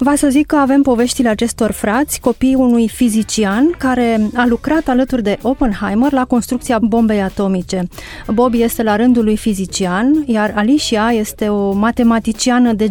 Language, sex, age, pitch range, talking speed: Romanian, female, 30-49, 200-240 Hz, 155 wpm